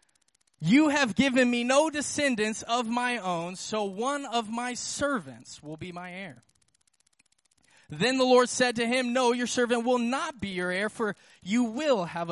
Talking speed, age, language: 175 wpm, 20-39, English